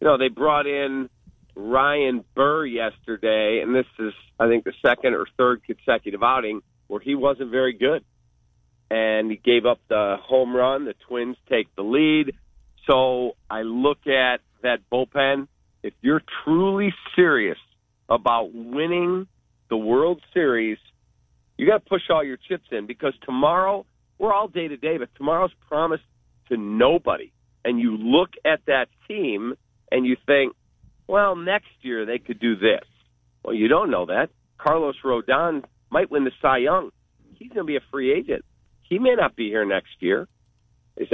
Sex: male